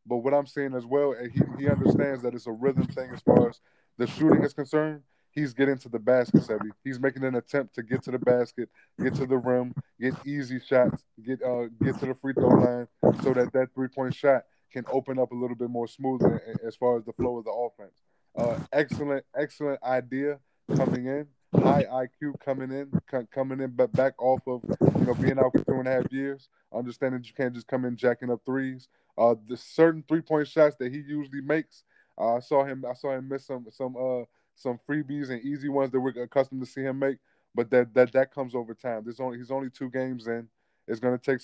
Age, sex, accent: 20-39, male, American